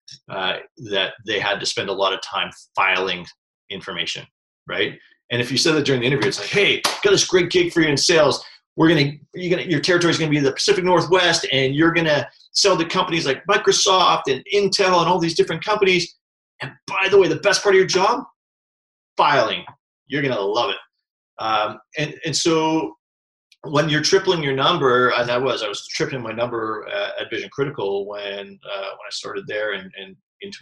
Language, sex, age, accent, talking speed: English, male, 30-49, American, 210 wpm